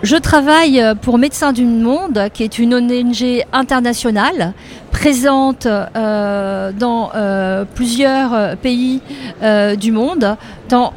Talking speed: 115 wpm